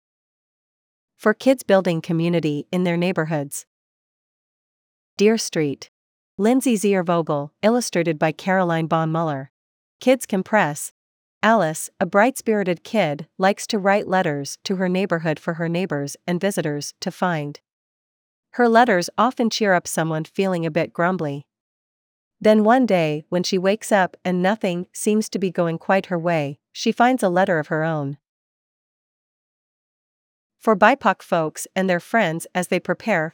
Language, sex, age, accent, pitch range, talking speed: English, female, 40-59, American, 155-205 Hz, 145 wpm